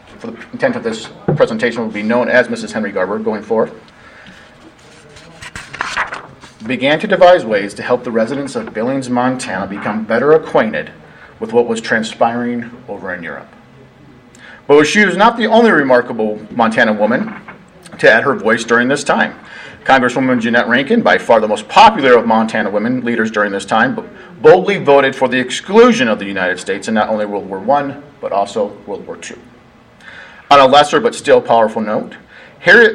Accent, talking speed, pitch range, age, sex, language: American, 175 wpm, 120-185 Hz, 40-59, male, English